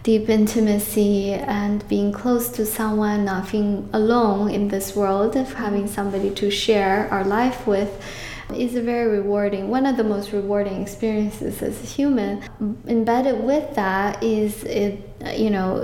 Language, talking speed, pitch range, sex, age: English, 155 wpm, 200-225 Hz, female, 10-29